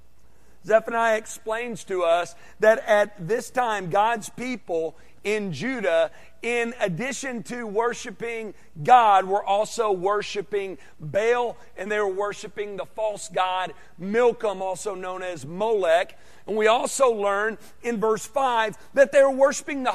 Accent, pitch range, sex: American, 205-300 Hz, male